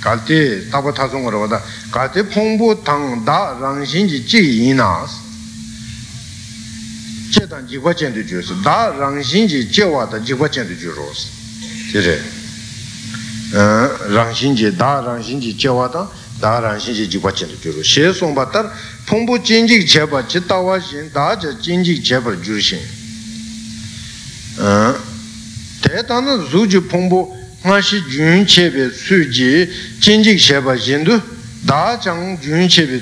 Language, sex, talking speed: Italian, male, 70 wpm